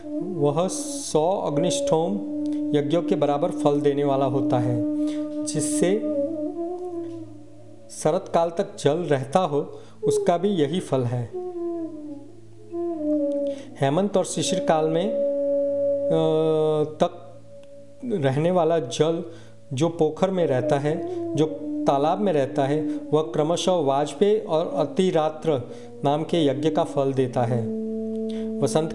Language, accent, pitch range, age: Hindi, native, 145-210 Hz, 40-59